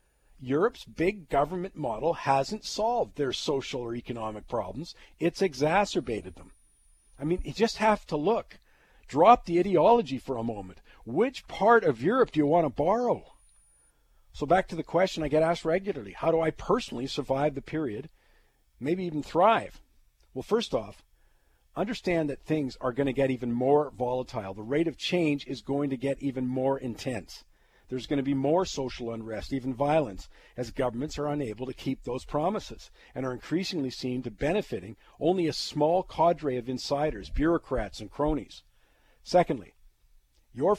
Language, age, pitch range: English, 50-69, 125-160 Hz